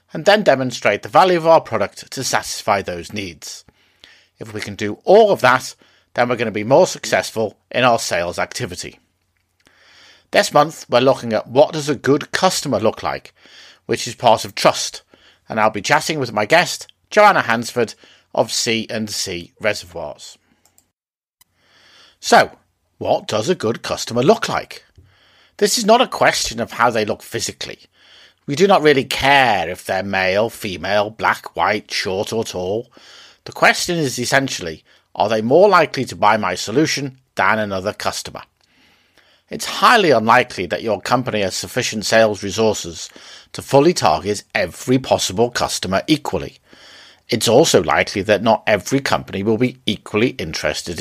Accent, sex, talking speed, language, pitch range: British, male, 160 wpm, English, 100-140 Hz